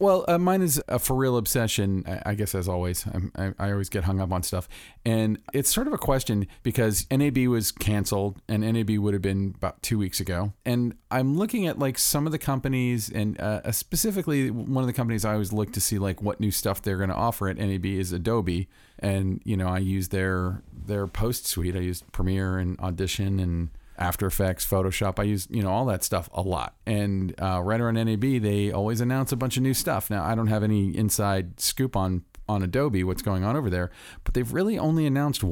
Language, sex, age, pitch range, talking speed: English, male, 40-59, 95-115 Hz, 225 wpm